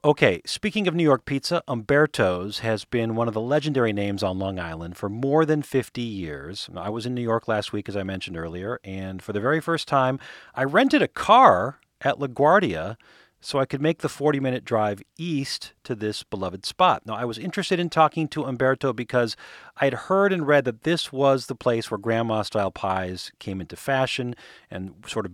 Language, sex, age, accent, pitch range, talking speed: English, male, 40-59, American, 105-140 Hz, 200 wpm